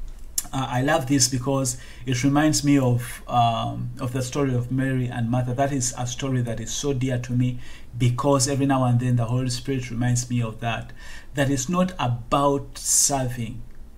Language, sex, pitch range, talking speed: English, male, 120-140 Hz, 190 wpm